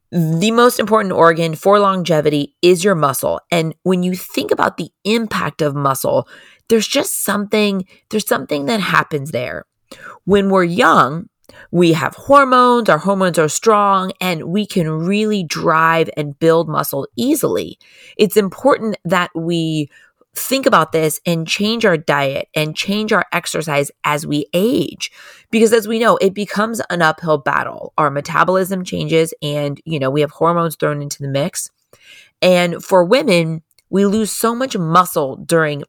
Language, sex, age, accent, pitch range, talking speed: English, female, 30-49, American, 160-210 Hz, 155 wpm